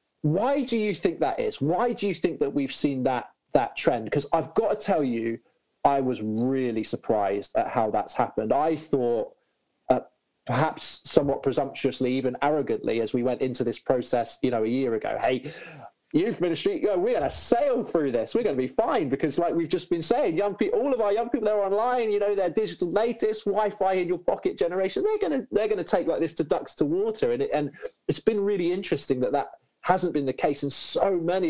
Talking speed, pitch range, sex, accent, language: 220 wpm, 135-200 Hz, male, British, English